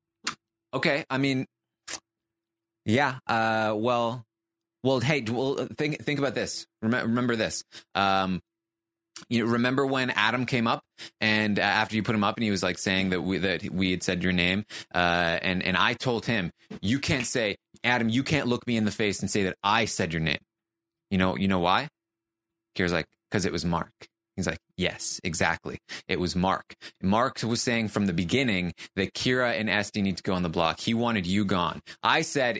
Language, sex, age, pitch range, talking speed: English, male, 20-39, 95-120 Hz, 195 wpm